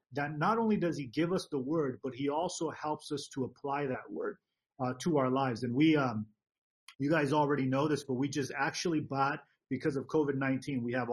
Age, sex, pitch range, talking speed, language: 30-49, male, 130-170 Hz, 215 wpm, English